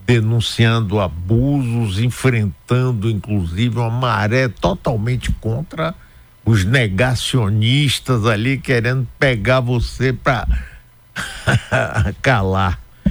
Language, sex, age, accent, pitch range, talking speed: Portuguese, male, 60-79, Brazilian, 95-125 Hz, 75 wpm